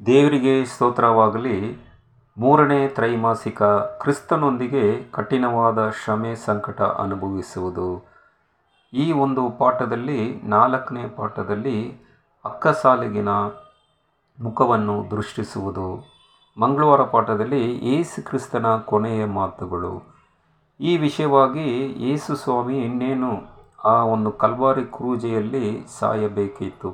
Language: Kannada